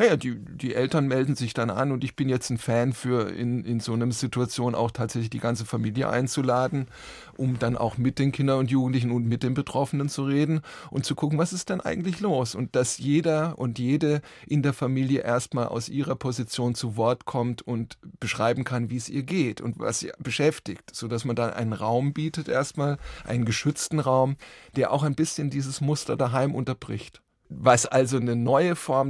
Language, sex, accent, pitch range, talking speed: German, male, German, 120-140 Hz, 200 wpm